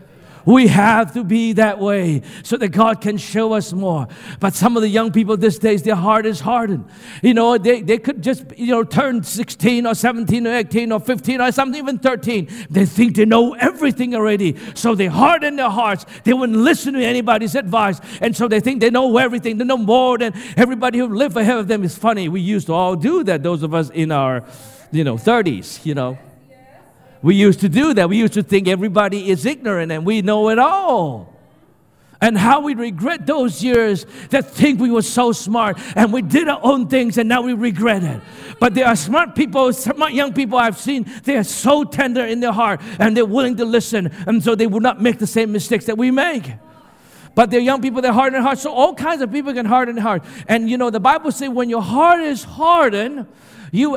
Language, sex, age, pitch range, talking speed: English, male, 50-69, 205-250 Hz, 220 wpm